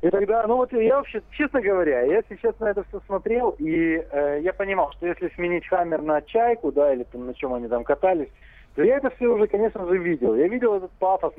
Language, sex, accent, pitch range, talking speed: Russian, male, native, 150-225 Hz, 230 wpm